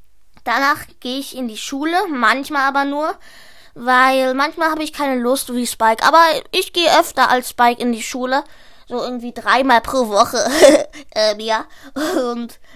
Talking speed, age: 160 wpm, 20-39